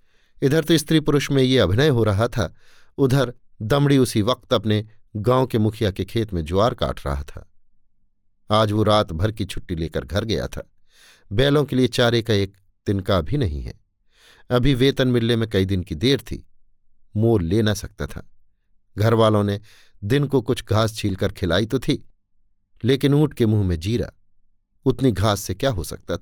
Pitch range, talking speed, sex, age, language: 100-125 Hz, 190 wpm, male, 50-69, Hindi